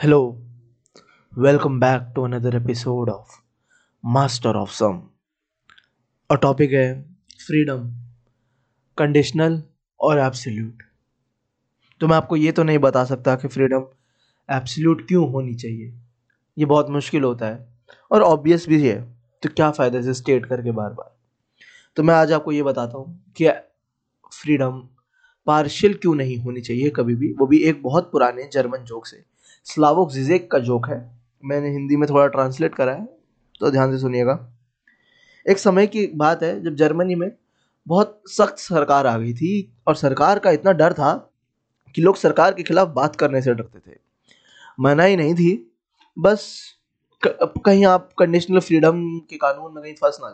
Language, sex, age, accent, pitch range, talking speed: Hindi, male, 20-39, native, 125-165 Hz, 160 wpm